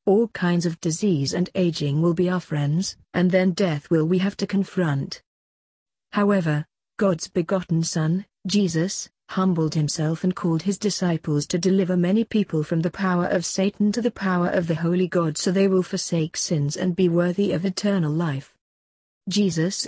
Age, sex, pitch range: 40-59, female, 160-195 Hz